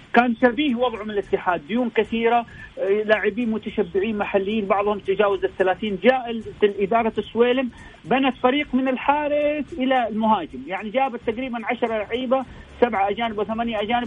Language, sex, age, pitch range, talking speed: Arabic, male, 40-59, 190-240 Hz, 135 wpm